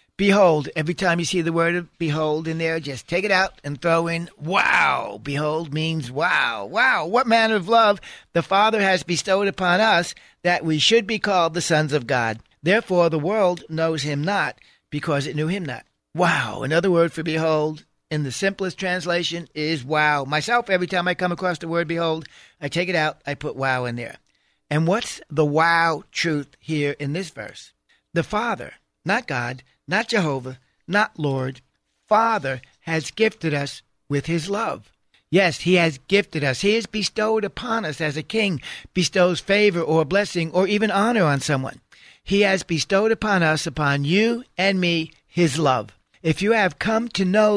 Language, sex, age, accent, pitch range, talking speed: English, male, 60-79, American, 155-195 Hz, 185 wpm